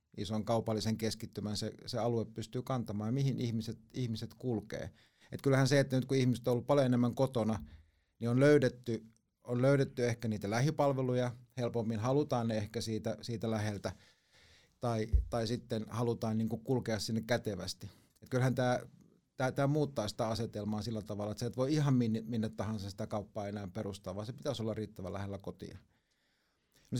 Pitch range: 110-130 Hz